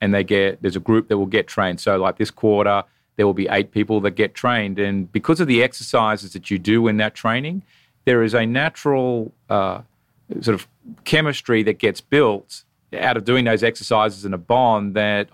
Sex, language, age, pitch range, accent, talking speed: male, English, 40-59, 105-120 Hz, Australian, 205 wpm